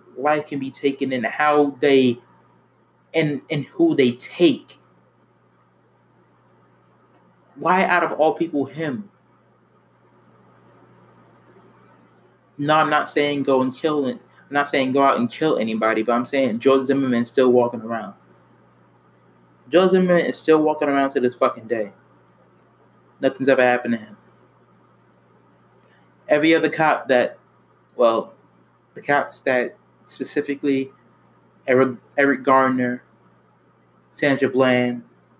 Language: English